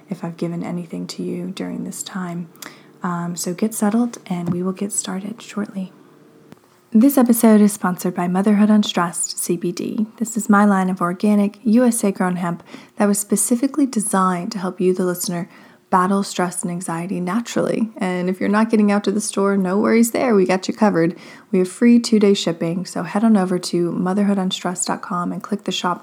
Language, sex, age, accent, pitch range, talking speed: English, female, 20-39, American, 185-215 Hz, 190 wpm